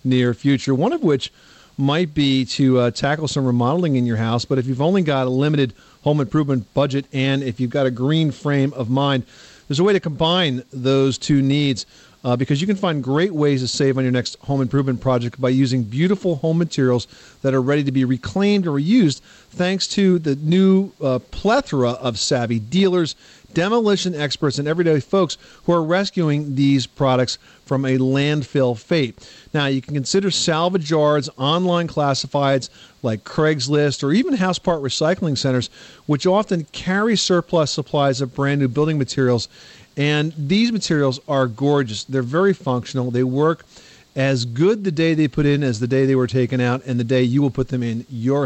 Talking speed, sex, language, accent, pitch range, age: 190 wpm, male, English, American, 130-170 Hz, 40-59